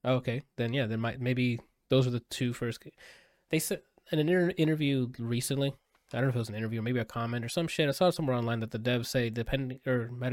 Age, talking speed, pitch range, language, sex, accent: 20-39, 265 wpm, 115-140 Hz, English, male, American